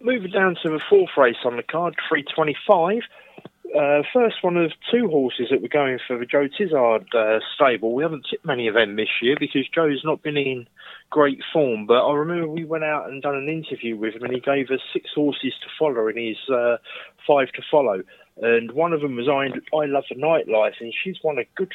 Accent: British